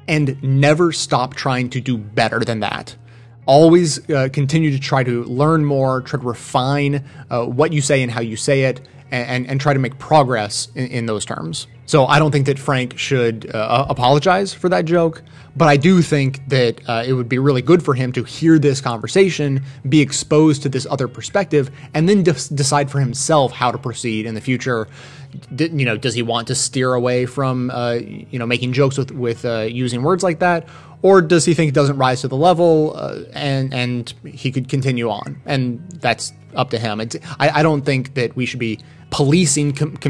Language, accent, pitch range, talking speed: English, American, 120-150 Hz, 210 wpm